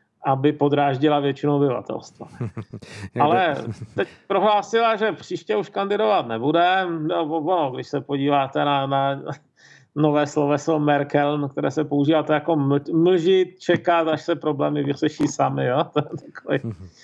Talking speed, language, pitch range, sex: 125 wpm, Czech, 140-170 Hz, male